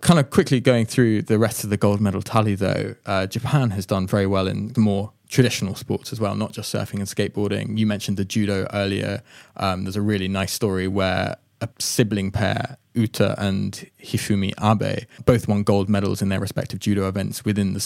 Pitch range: 100-120 Hz